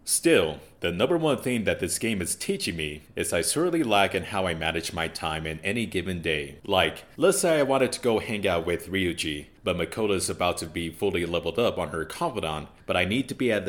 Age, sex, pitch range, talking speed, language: 30-49, male, 80-105 Hz, 235 wpm, English